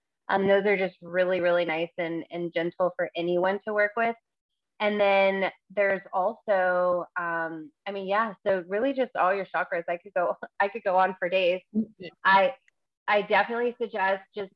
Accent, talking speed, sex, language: American, 175 wpm, female, English